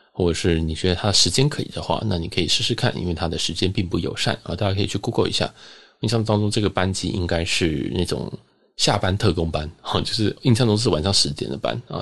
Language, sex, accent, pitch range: Chinese, male, native, 85-110 Hz